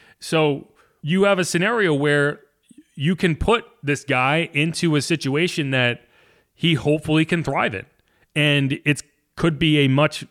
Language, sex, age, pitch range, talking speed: English, male, 30-49, 125-165 Hz, 150 wpm